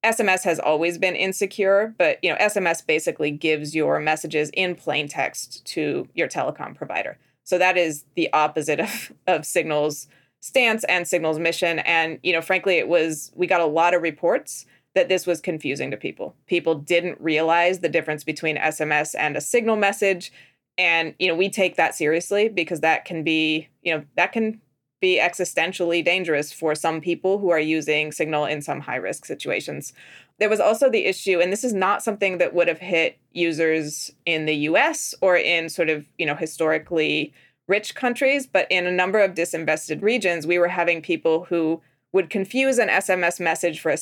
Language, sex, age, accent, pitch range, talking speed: English, female, 20-39, American, 155-190 Hz, 185 wpm